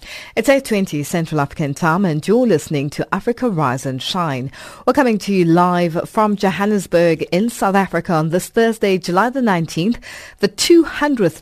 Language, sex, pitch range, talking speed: English, female, 165-240 Hz, 170 wpm